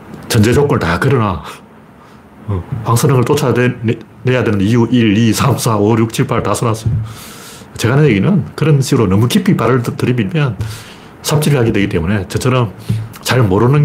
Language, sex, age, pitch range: Korean, male, 40-59, 110-145 Hz